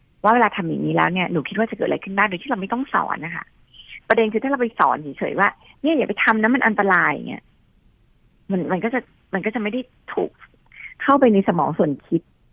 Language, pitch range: Thai, 165-225 Hz